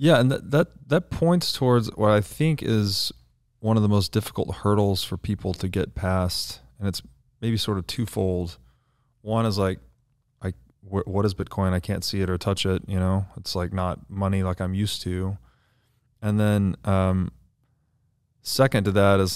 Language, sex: English, male